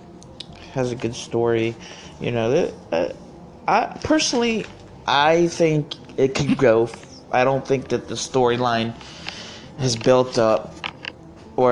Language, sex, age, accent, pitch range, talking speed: English, male, 20-39, American, 110-135 Hz, 125 wpm